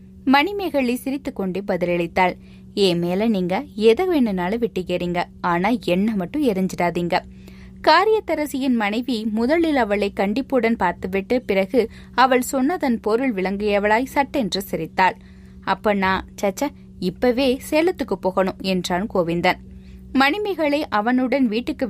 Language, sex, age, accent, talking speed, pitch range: Tamil, female, 20-39, native, 100 wpm, 185-260 Hz